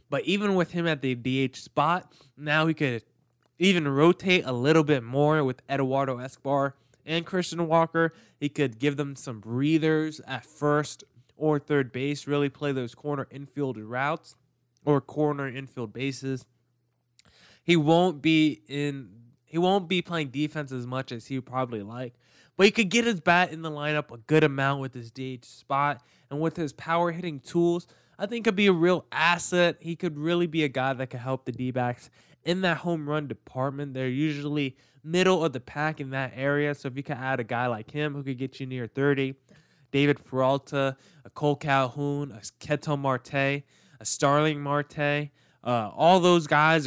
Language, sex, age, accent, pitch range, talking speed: English, male, 20-39, American, 130-160 Hz, 185 wpm